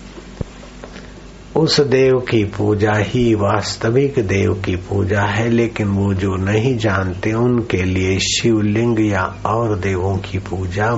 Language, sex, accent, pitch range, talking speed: Hindi, male, native, 95-110 Hz, 125 wpm